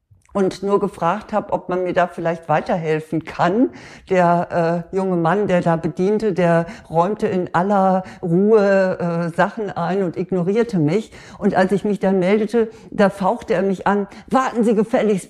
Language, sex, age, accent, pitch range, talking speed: German, female, 60-79, German, 175-220 Hz, 170 wpm